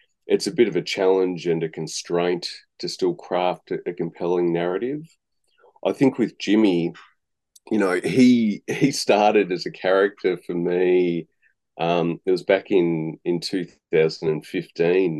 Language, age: English, 30-49